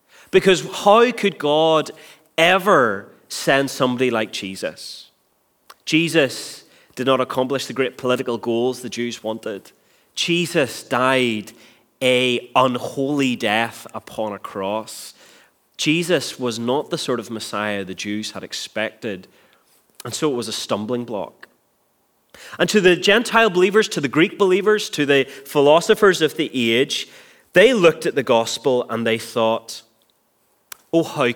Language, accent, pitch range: English, British, 110-150 Hz